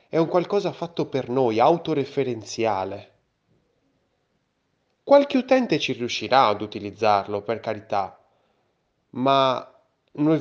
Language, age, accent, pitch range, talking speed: Italian, 30-49, native, 105-140 Hz, 100 wpm